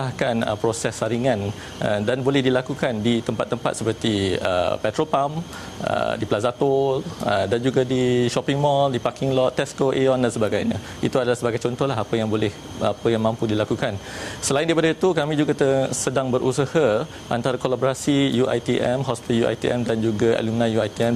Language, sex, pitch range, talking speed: Malay, male, 105-130 Hz, 160 wpm